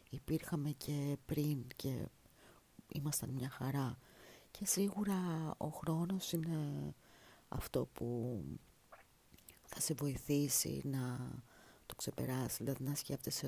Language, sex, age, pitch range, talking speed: Greek, female, 40-59, 130-170 Hz, 100 wpm